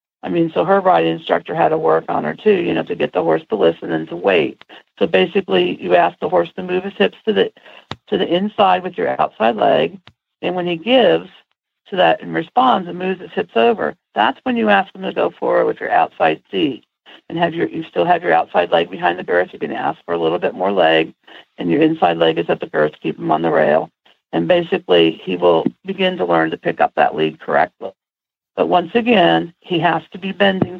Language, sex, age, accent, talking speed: English, female, 50-69, American, 240 wpm